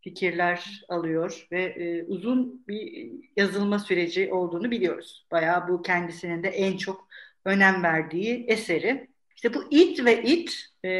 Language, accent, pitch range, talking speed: Turkish, native, 170-225 Hz, 135 wpm